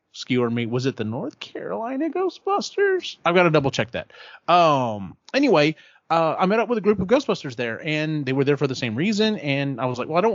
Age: 30-49